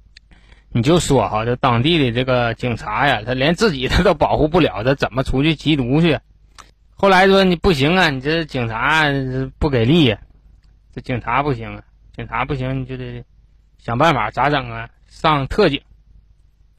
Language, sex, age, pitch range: Chinese, male, 20-39, 115-160 Hz